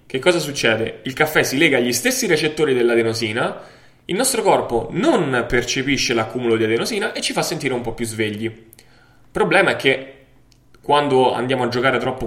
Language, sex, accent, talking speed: Italian, male, native, 170 wpm